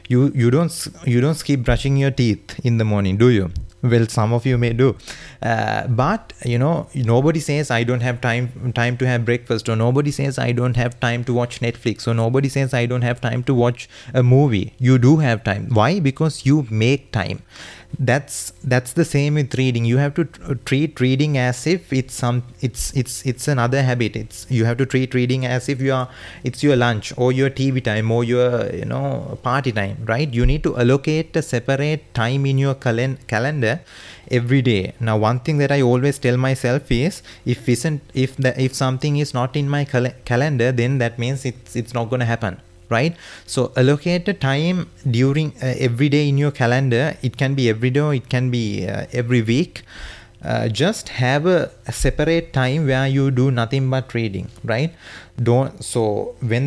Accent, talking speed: Indian, 200 wpm